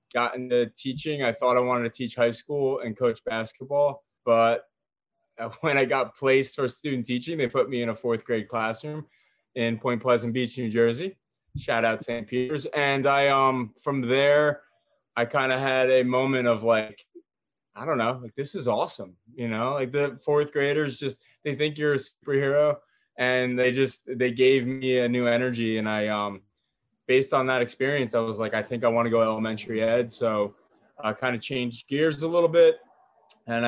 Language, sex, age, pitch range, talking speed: English, male, 20-39, 115-140 Hz, 195 wpm